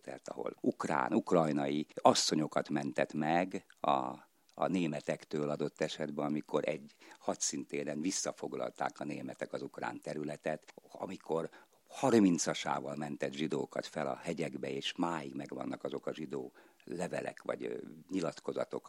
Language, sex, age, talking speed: Hungarian, male, 50-69, 120 wpm